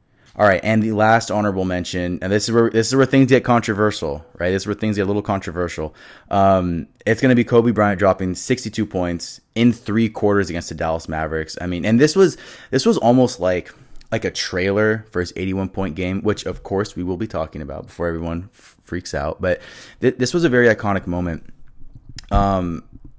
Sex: male